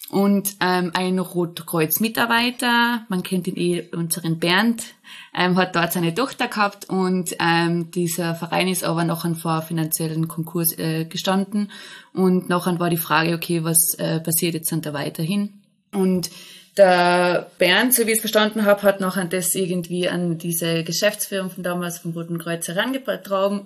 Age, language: 20-39, German